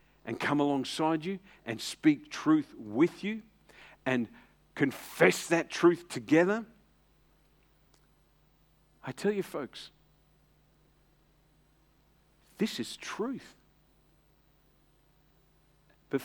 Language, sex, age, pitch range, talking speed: English, male, 50-69, 135-190 Hz, 80 wpm